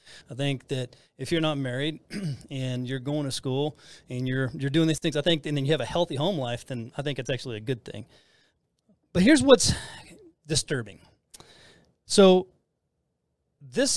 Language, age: English, 30-49